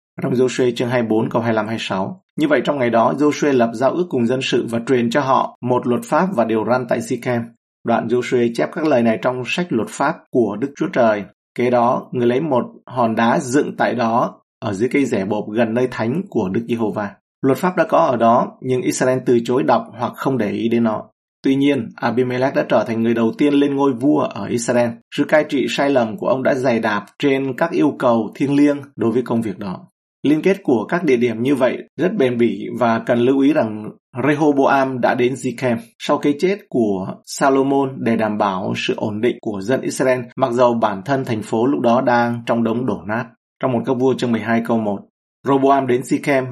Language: Vietnamese